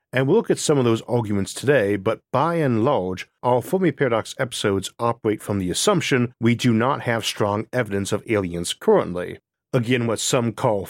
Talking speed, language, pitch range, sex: 185 wpm, English, 100-125 Hz, male